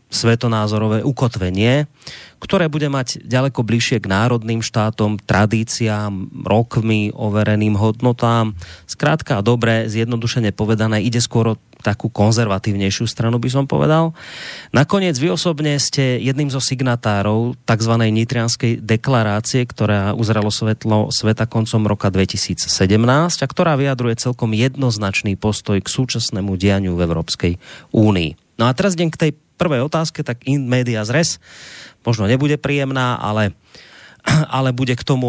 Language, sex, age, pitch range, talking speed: Slovak, male, 30-49, 110-140 Hz, 130 wpm